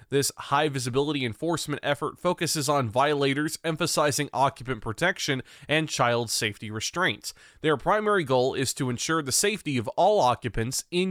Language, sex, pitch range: English, male, 135-175 Hz